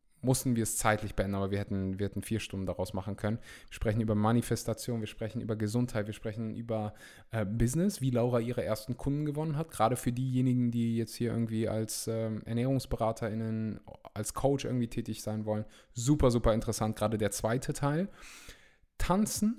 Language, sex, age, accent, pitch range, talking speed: German, male, 20-39, German, 110-130 Hz, 180 wpm